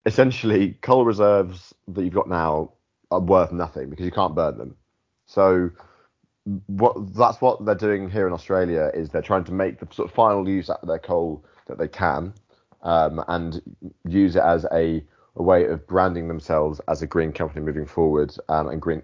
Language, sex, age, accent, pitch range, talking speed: English, male, 30-49, British, 75-90 Hz, 190 wpm